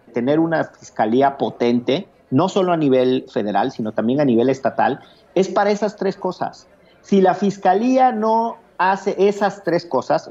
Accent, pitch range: Mexican, 135-195 Hz